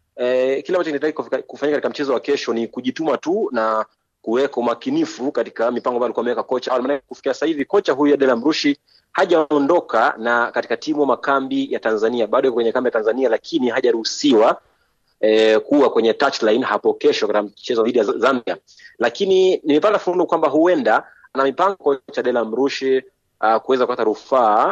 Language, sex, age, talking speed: Swahili, male, 30-49, 165 wpm